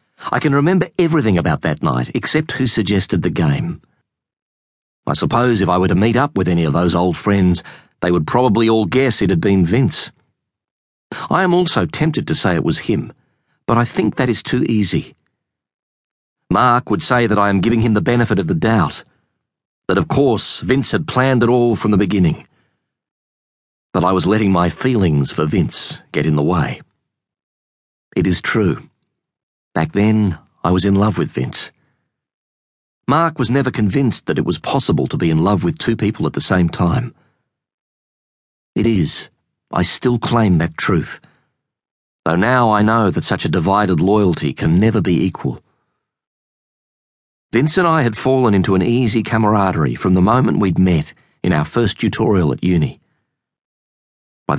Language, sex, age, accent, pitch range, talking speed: English, male, 40-59, Australian, 90-125 Hz, 175 wpm